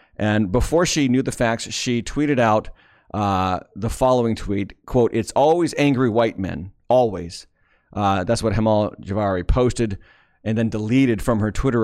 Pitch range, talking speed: 100-125 Hz, 160 wpm